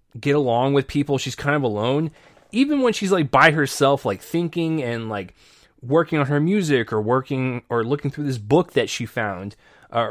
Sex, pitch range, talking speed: male, 115-155 Hz, 195 wpm